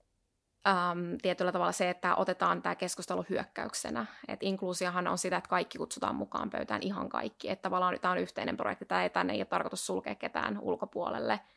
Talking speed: 175 wpm